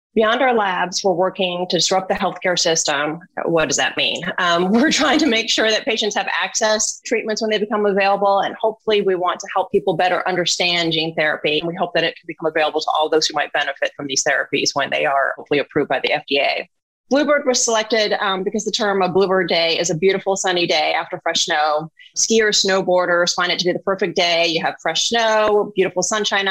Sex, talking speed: female, 225 wpm